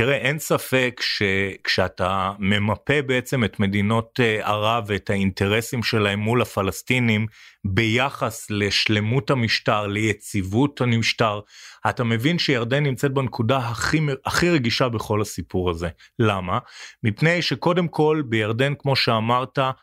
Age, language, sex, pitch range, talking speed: 30-49, Hebrew, male, 110-140 Hz, 110 wpm